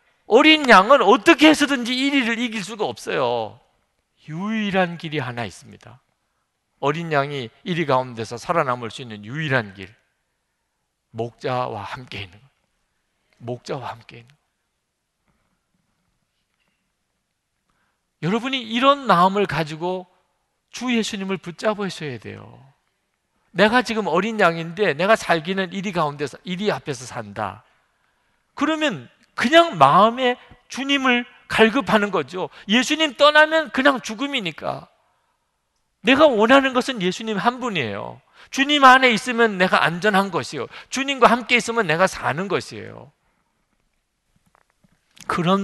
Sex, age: male, 50-69